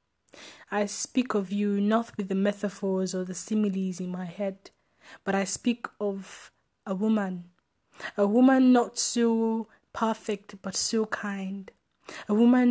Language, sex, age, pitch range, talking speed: English, female, 20-39, 195-220 Hz, 140 wpm